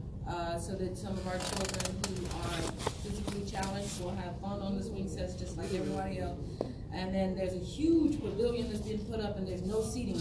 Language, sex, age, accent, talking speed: English, female, 40-59, American, 210 wpm